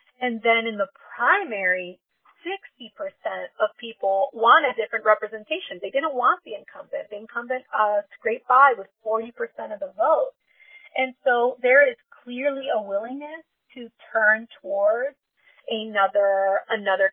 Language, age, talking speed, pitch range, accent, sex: English, 30-49, 145 wpm, 210-255 Hz, American, female